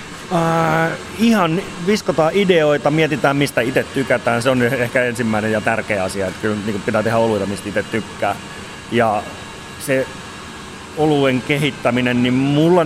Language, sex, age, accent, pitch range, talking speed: Finnish, male, 30-49, native, 110-140 Hz, 145 wpm